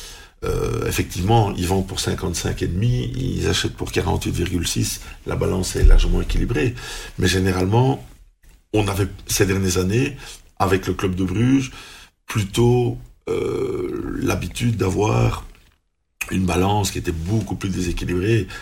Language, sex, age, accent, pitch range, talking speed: French, male, 50-69, French, 90-115 Hz, 120 wpm